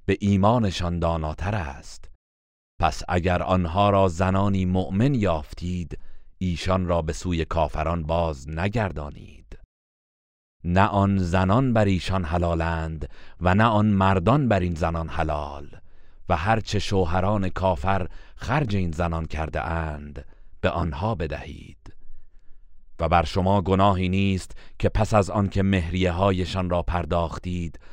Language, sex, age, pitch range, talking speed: Persian, male, 40-59, 80-95 Hz, 125 wpm